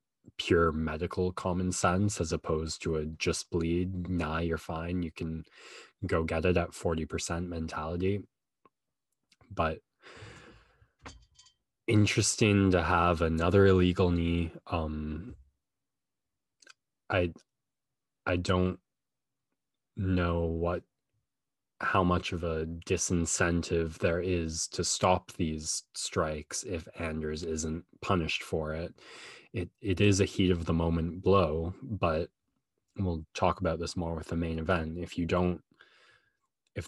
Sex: male